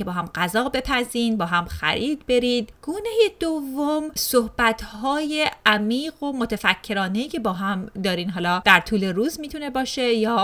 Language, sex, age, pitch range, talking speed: Persian, female, 30-49, 195-255 Hz, 145 wpm